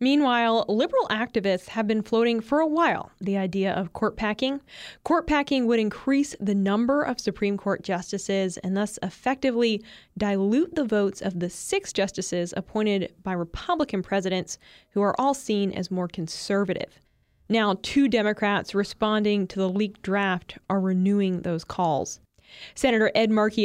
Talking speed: 150 wpm